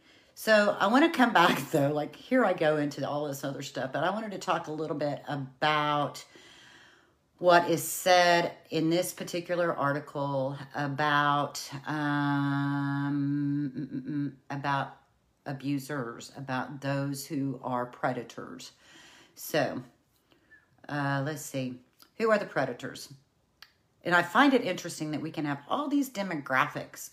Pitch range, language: 140-185 Hz, English